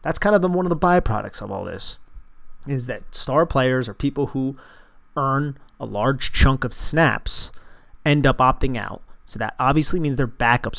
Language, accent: English, American